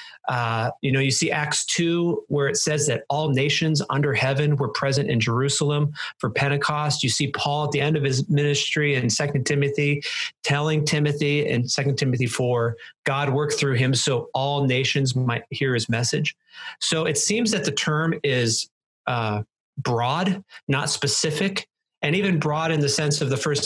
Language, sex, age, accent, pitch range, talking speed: English, male, 40-59, American, 135-155 Hz, 180 wpm